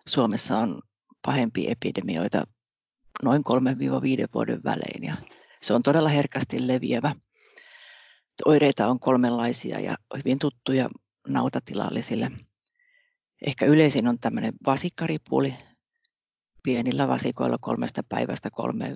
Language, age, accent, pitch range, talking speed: Finnish, 40-59, native, 125-165 Hz, 95 wpm